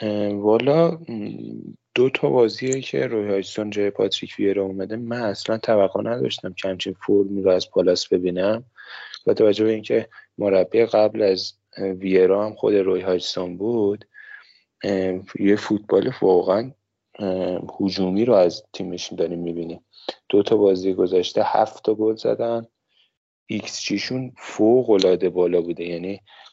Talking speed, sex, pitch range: 135 wpm, male, 95-110 Hz